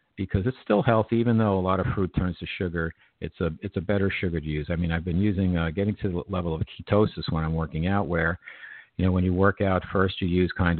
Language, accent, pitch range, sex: English, American, 85-105 Hz, male